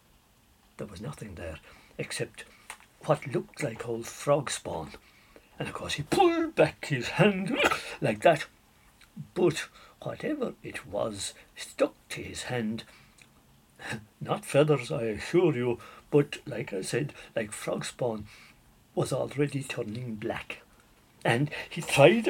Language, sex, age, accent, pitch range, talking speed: English, male, 60-79, British, 115-155 Hz, 130 wpm